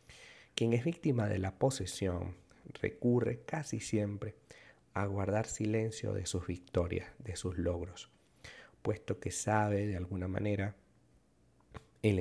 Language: Spanish